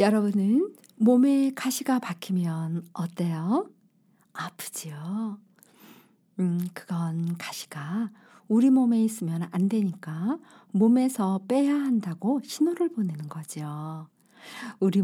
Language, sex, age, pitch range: Korean, female, 50-69, 175-260 Hz